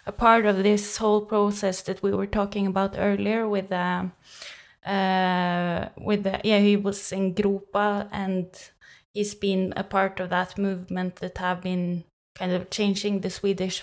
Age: 20-39